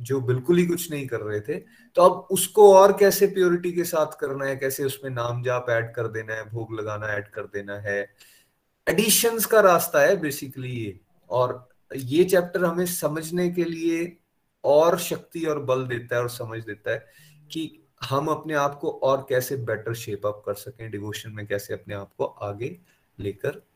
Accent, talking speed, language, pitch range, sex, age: native, 190 wpm, Hindi, 110-170 Hz, male, 30-49